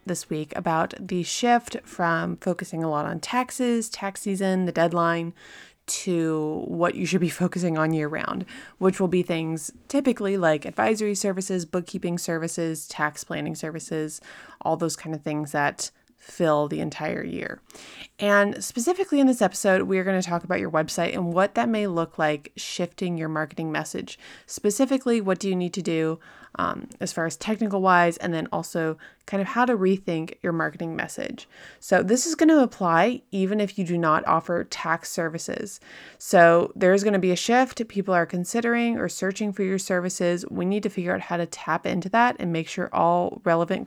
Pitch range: 165-205 Hz